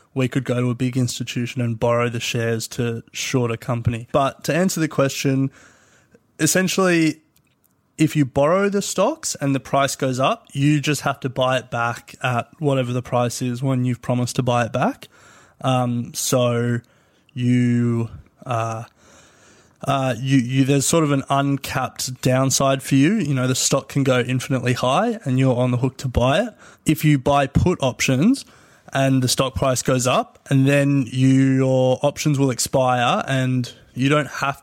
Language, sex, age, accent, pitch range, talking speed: English, male, 20-39, Australian, 125-140 Hz, 180 wpm